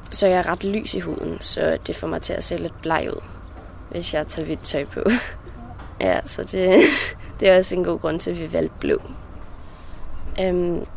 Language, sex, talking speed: Danish, female, 210 wpm